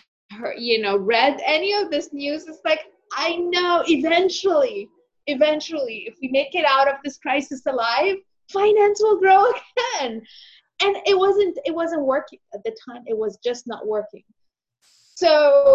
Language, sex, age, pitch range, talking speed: English, female, 30-49, 230-330 Hz, 155 wpm